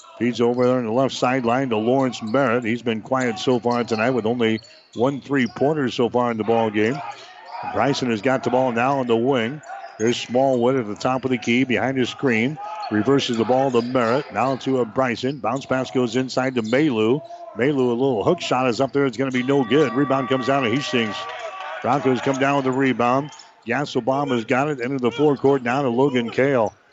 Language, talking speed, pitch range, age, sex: English, 220 wpm, 125-150 Hz, 50-69, male